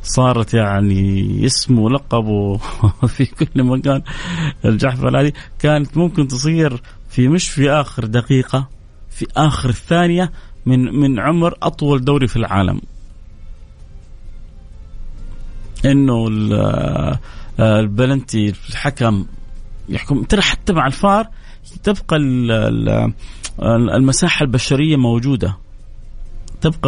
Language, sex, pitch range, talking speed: Arabic, male, 110-150 Hz, 90 wpm